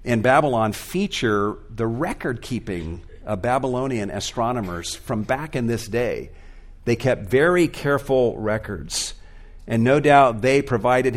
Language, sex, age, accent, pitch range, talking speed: English, male, 50-69, American, 85-140 Hz, 130 wpm